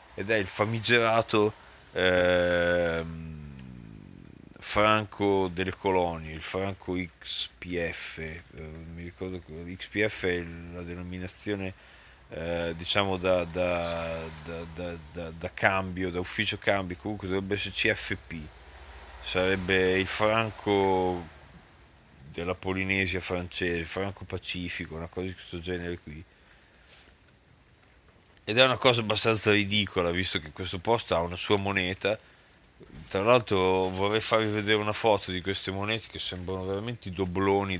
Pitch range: 85-100 Hz